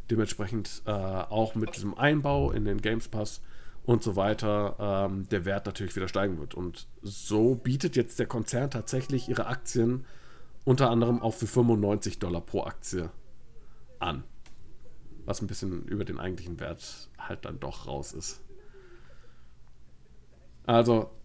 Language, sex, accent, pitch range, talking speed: German, male, German, 100-120 Hz, 145 wpm